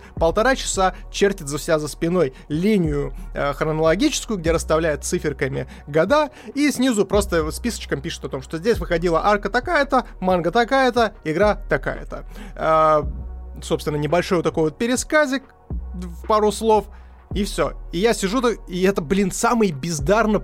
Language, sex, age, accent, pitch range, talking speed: Russian, male, 20-39, native, 135-195 Hz, 140 wpm